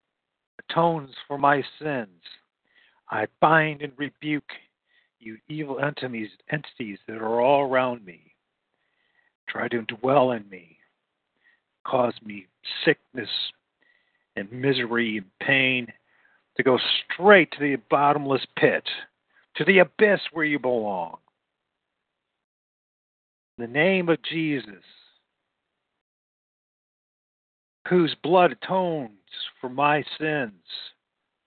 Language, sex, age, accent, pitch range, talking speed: English, male, 50-69, American, 105-150 Hz, 100 wpm